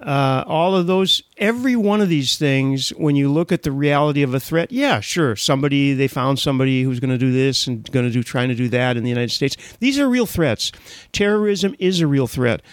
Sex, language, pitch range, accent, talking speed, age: male, English, 130-180 Hz, American, 235 wpm, 40-59